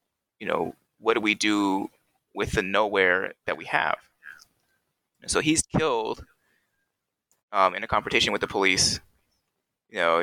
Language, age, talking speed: English, 20-39, 140 wpm